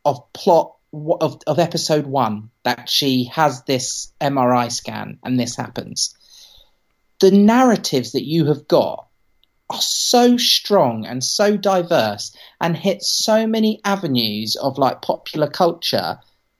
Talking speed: 130 wpm